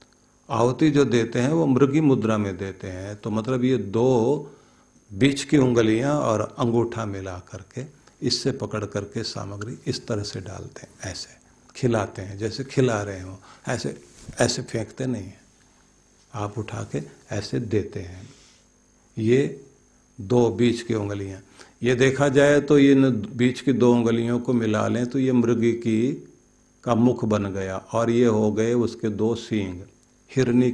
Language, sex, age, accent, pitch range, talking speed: Hindi, male, 50-69, native, 105-125 Hz, 155 wpm